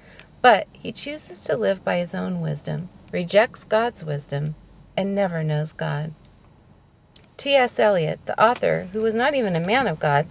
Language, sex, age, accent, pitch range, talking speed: English, female, 40-59, American, 160-225 Hz, 165 wpm